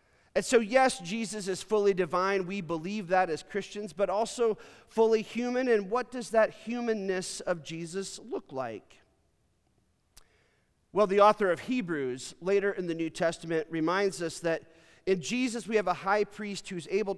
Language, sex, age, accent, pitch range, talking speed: English, male, 40-59, American, 165-215 Hz, 170 wpm